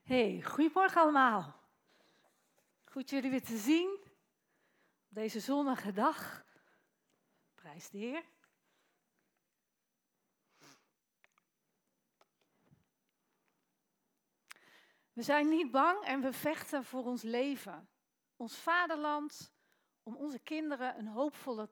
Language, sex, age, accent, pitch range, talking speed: Dutch, female, 40-59, Dutch, 210-280 Hz, 90 wpm